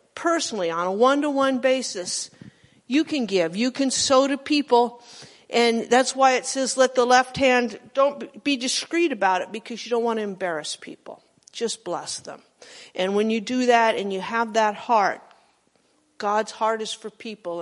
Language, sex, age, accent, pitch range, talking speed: English, female, 50-69, American, 220-280 Hz, 175 wpm